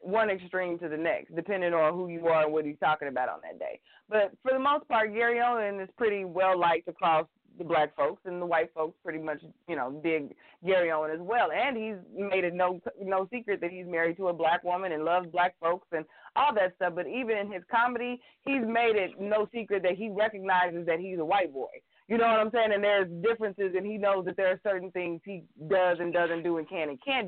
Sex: female